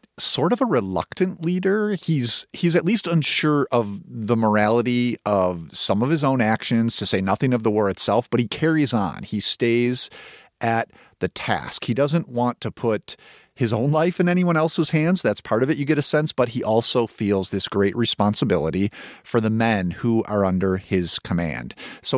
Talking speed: 190 wpm